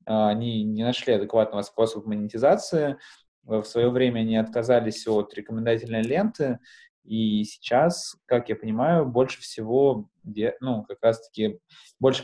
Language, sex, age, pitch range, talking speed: Russian, male, 20-39, 110-125 Hz, 125 wpm